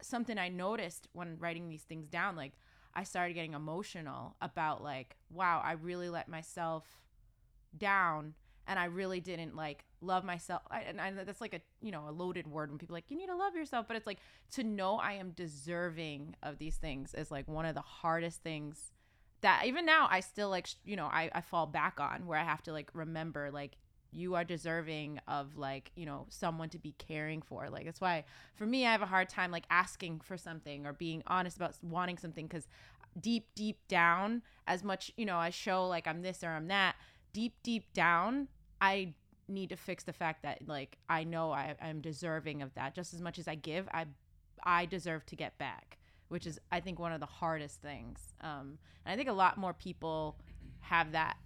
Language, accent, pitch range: English, American, 155-185 Hz